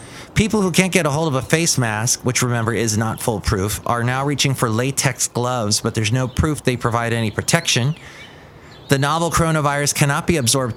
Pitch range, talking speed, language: 120-150 Hz, 195 wpm, English